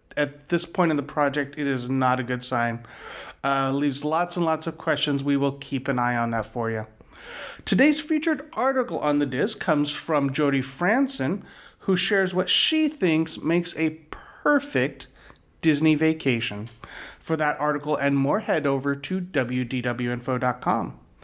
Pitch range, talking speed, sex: 135-175 Hz, 160 wpm, male